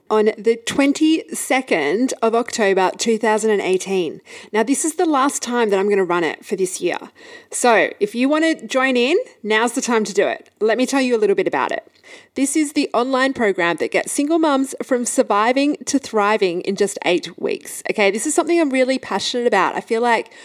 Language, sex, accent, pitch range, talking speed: English, female, Australian, 185-260 Hz, 205 wpm